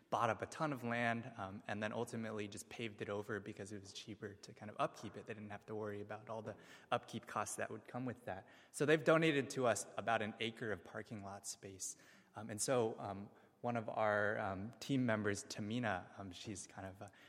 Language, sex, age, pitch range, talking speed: English, male, 20-39, 105-125 Hz, 230 wpm